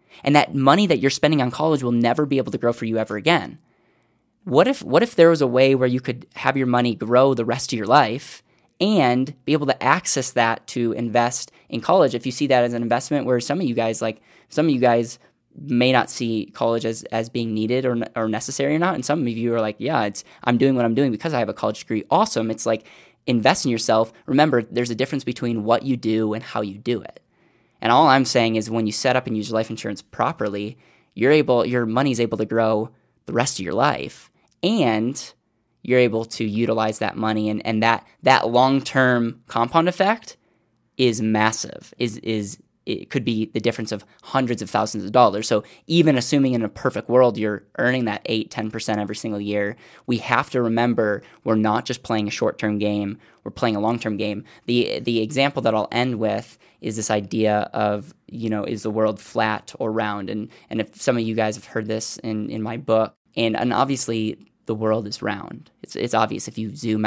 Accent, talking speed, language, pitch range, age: American, 225 wpm, English, 110-125 Hz, 10-29